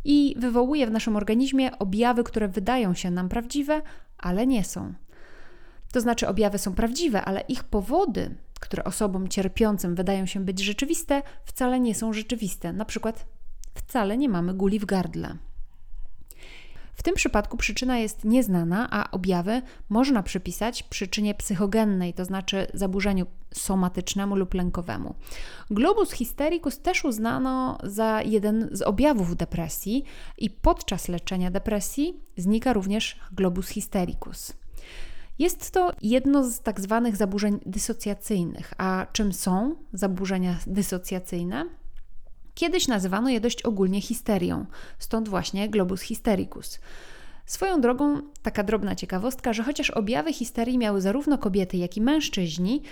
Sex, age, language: female, 30-49, Polish